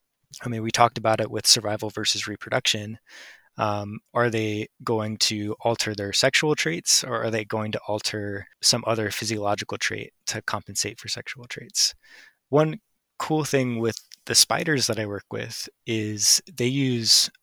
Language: English